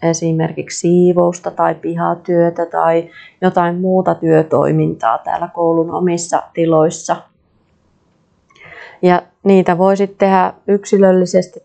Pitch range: 165-200 Hz